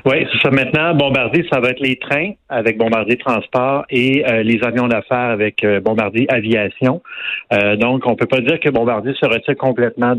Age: 30-49